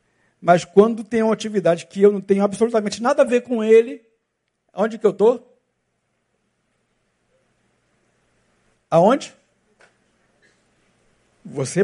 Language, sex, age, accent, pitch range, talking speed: Portuguese, male, 60-79, Brazilian, 195-240 Hz, 105 wpm